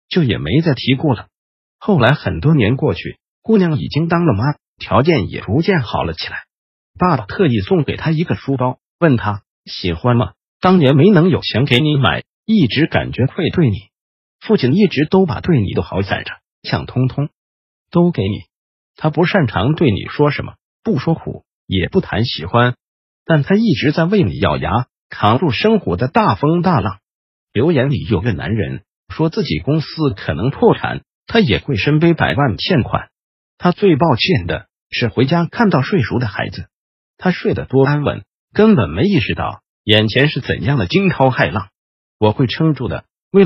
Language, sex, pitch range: Chinese, male, 115-170 Hz